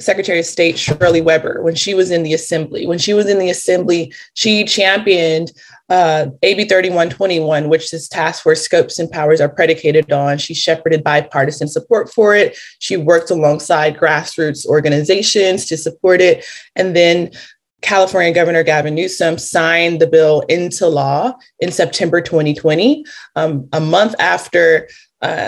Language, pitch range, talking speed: English, 155-185 Hz, 150 wpm